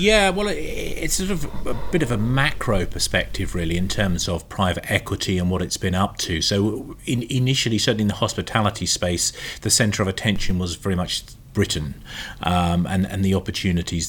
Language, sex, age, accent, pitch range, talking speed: English, male, 30-49, British, 85-105 Hz, 185 wpm